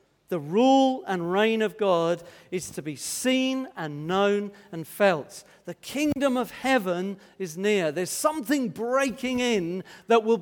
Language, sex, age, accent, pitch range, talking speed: English, male, 50-69, British, 175-240 Hz, 150 wpm